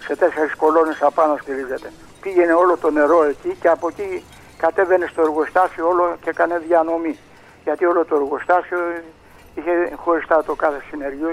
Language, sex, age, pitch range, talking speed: Greek, male, 60-79, 150-180 Hz, 155 wpm